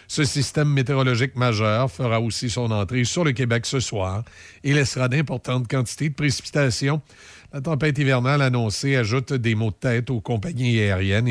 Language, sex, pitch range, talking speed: French, male, 115-145 Hz, 165 wpm